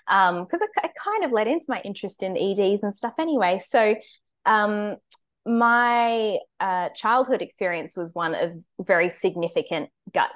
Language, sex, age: English, female, 10-29